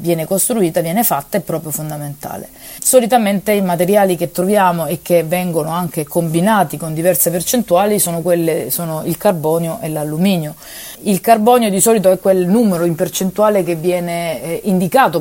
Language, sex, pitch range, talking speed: Italian, female, 165-200 Hz, 150 wpm